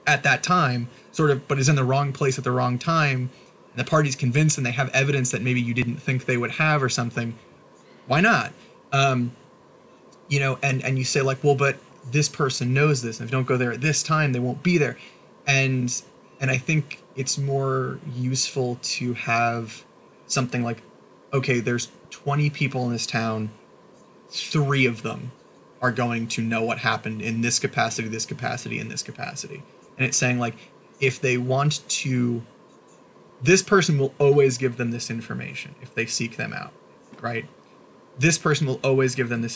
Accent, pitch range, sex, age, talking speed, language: American, 120-140 Hz, male, 20-39, 190 wpm, English